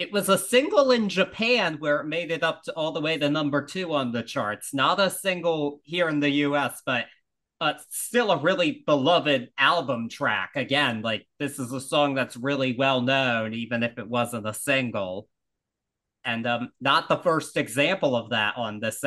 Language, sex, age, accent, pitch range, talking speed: English, male, 20-39, American, 130-170 Hz, 195 wpm